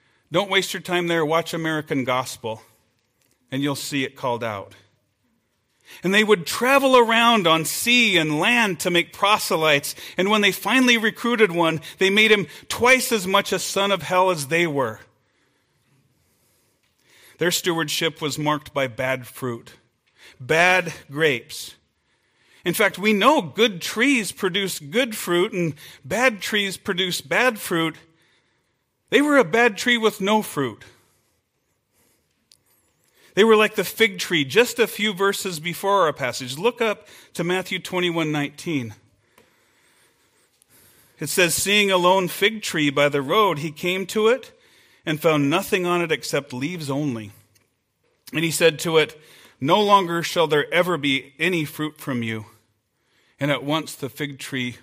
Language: English